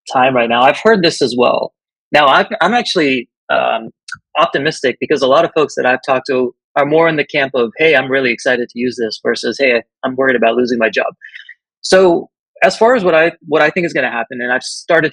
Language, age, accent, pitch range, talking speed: English, 30-49, American, 125-165 Hz, 235 wpm